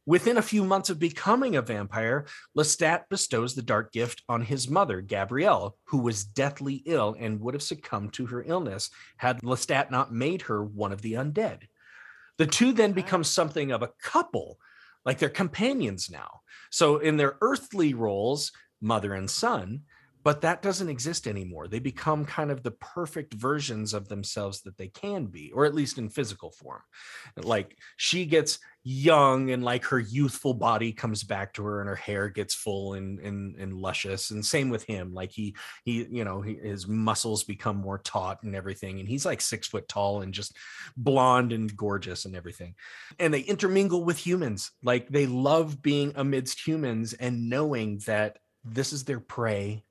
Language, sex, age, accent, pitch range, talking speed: English, male, 30-49, American, 105-150 Hz, 180 wpm